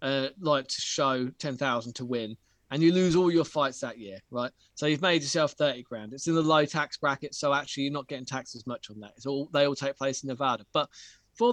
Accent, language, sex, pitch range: British, English, male, 120-190 Hz